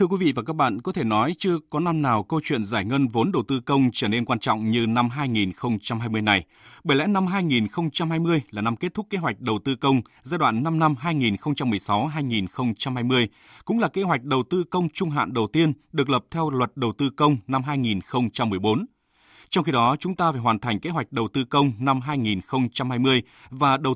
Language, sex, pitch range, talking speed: Vietnamese, male, 115-155 Hz, 210 wpm